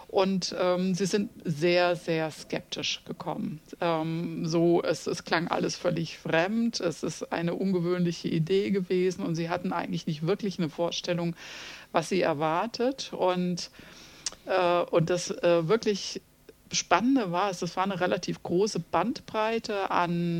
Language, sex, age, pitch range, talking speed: German, female, 50-69, 170-200 Hz, 140 wpm